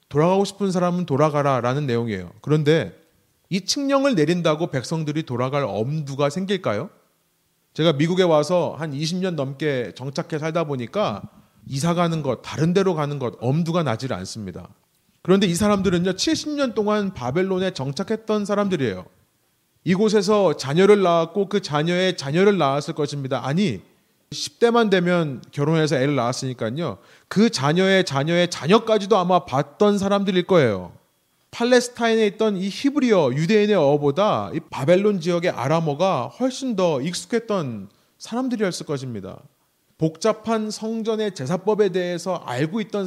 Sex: male